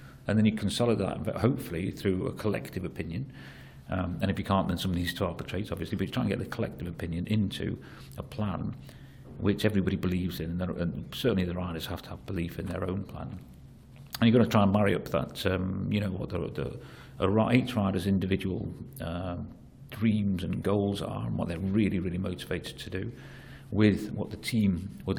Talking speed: 205 wpm